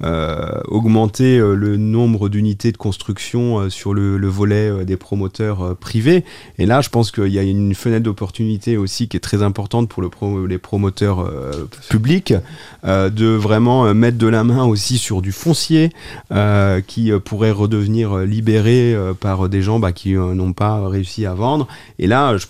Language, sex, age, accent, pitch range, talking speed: French, male, 30-49, French, 100-120 Hz, 195 wpm